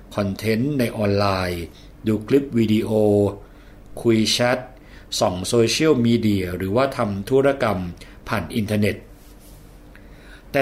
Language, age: Thai, 60-79